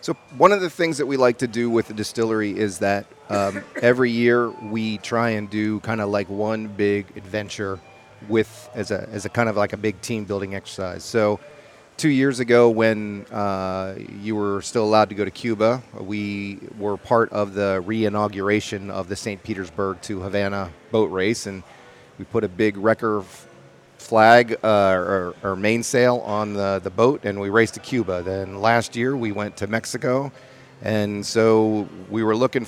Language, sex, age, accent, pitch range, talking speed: English, male, 40-59, American, 100-115 Hz, 185 wpm